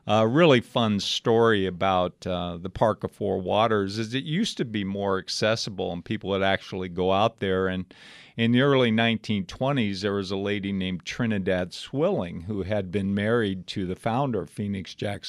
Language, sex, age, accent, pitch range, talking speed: English, male, 50-69, American, 90-110 Hz, 190 wpm